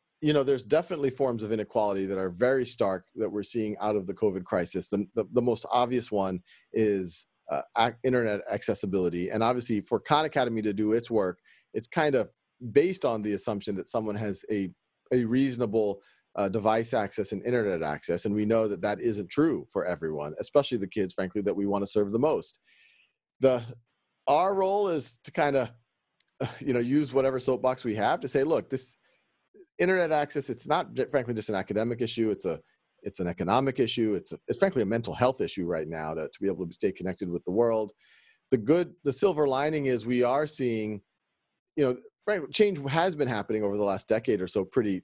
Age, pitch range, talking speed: 40-59, 100-135 Hz, 205 wpm